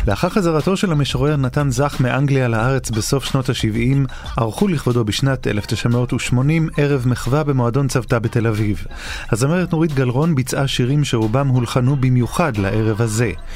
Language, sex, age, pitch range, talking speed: Hebrew, male, 30-49, 115-145 Hz, 135 wpm